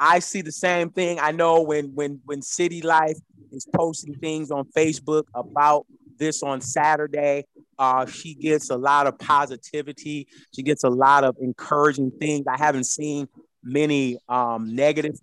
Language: English